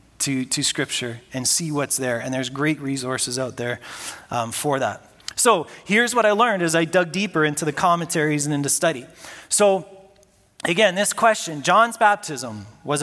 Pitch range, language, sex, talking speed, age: 145-195 Hz, English, male, 175 wpm, 30-49